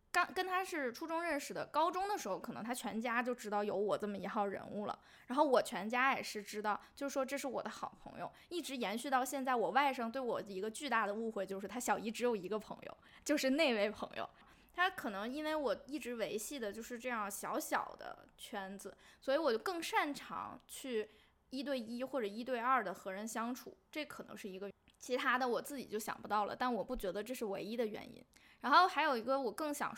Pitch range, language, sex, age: 215-275 Hz, Chinese, female, 10-29